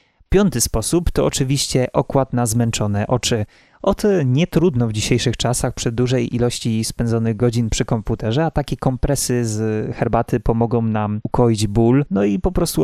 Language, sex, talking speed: Polish, male, 160 wpm